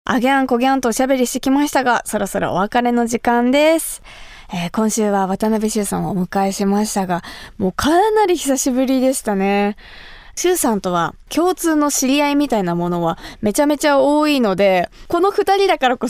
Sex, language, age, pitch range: female, Japanese, 20-39, 195-270 Hz